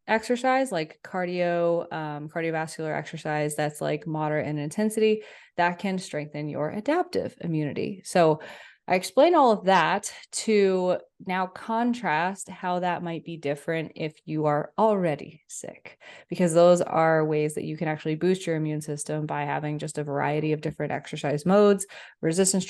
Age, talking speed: 20-39, 155 wpm